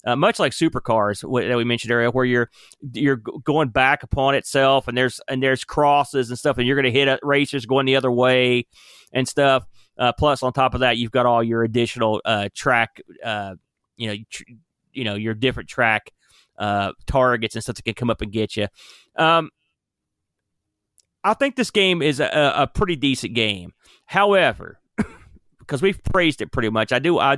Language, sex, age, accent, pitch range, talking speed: English, male, 30-49, American, 120-160 Hz, 200 wpm